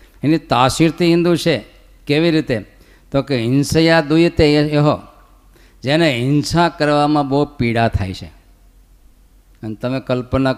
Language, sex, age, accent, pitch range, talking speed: Gujarati, male, 50-69, native, 120-160 Hz, 125 wpm